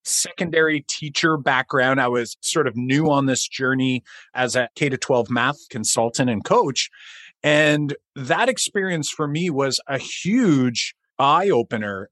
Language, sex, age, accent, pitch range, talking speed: English, male, 30-49, American, 120-150 Hz, 150 wpm